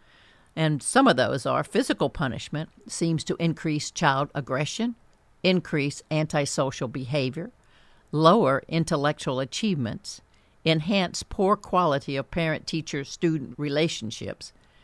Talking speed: 95 wpm